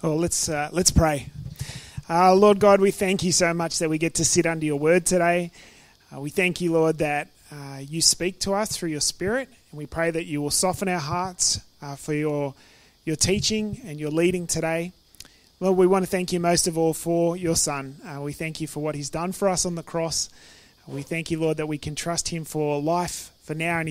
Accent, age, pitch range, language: Australian, 30-49, 150-180 Hz, English